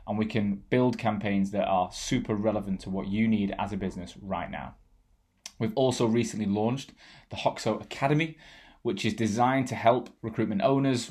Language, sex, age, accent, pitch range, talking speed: English, male, 20-39, British, 100-120 Hz, 175 wpm